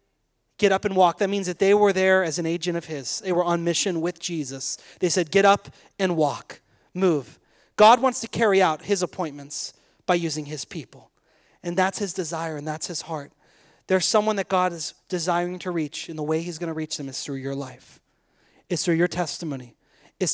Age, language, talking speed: 30-49, English, 210 wpm